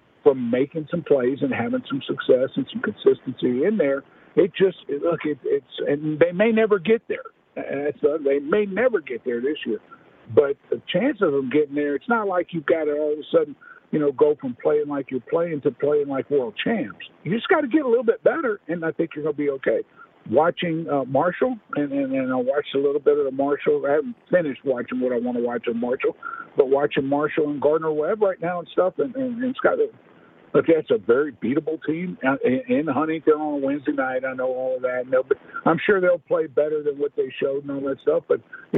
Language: English